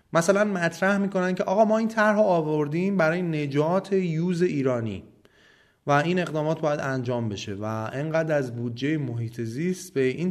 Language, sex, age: Persian, male, 30-49